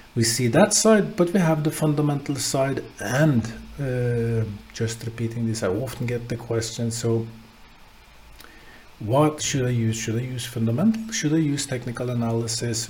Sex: male